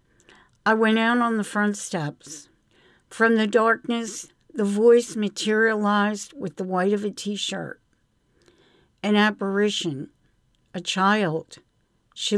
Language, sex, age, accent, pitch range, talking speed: English, female, 60-79, American, 185-225 Hz, 115 wpm